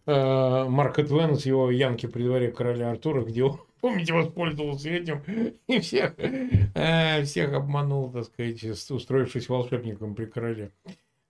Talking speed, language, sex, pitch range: 115 wpm, Russian, male, 125-170 Hz